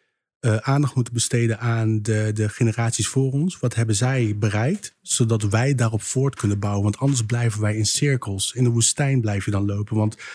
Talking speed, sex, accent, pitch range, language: 195 wpm, male, Dutch, 115-135 Hz, Dutch